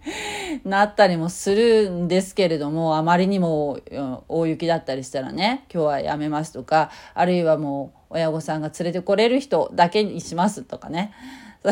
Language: Japanese